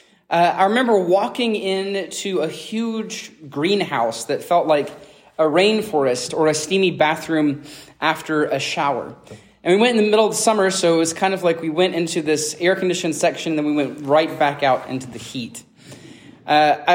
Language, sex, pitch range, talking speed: English, male, 150-195 Hz, 180 wpm